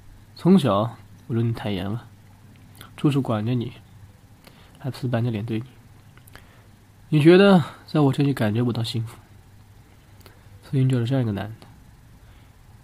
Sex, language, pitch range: male, Chinese, 100-125 Hz